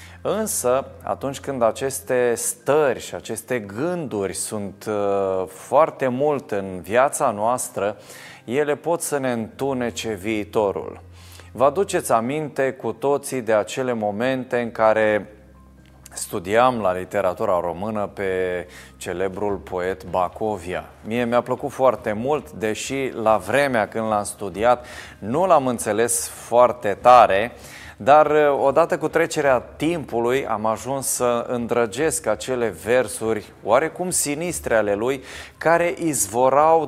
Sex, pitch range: male, 100-135 Hz